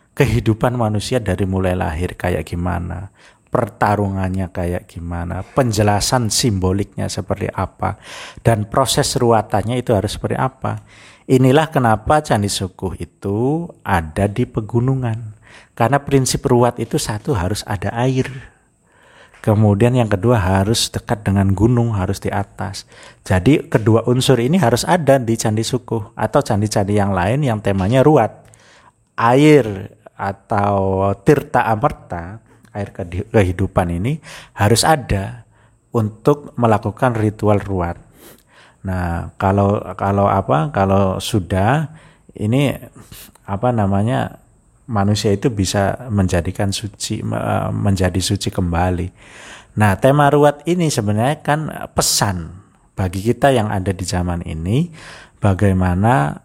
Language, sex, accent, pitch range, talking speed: Indonesian, male, native, 95-125 Hz, 115 wpm